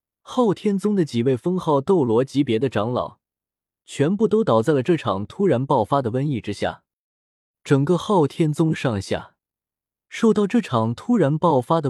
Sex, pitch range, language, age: male, 115-170 Hz, Chinese, 20-39